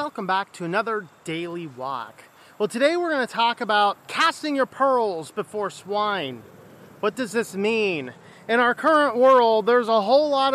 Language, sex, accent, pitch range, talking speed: English, male, American, 195-240 Hz, 170 wpm